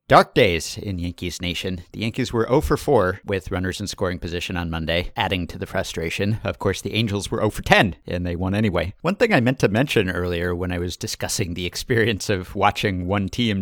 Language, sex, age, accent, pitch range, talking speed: English, male, 50-69, American, 95-125 Hz, 205 wpm